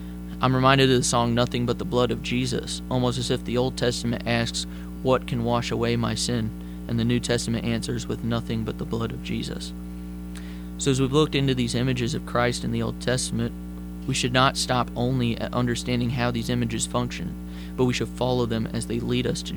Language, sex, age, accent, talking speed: English, male, 20-39, American, 215 wpm